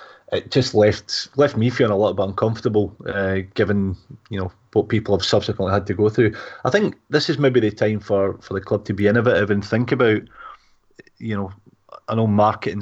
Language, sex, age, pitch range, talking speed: English, male, 30-49, 100-110 Hz, 205 wpm